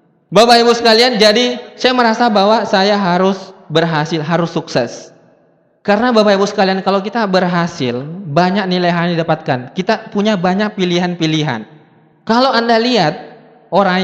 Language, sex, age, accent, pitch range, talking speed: Indonesian, male, 20-39, native, 175-235 Hz, 125 wpm